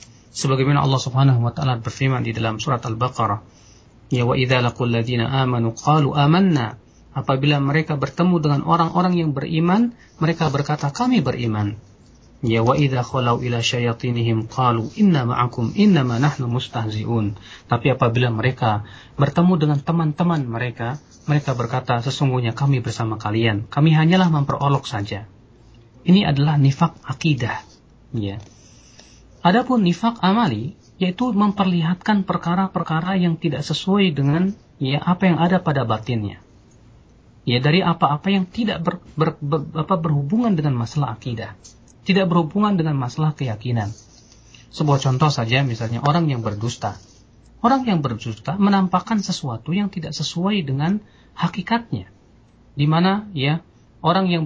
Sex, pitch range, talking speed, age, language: male, 120-170 Hz, 125 wpm, 40-59, Indonesian